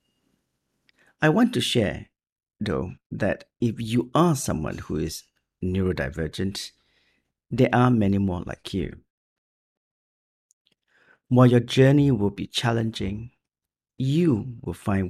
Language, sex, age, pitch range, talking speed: English, male, 50-69, 100-130 Hz, 110 wpm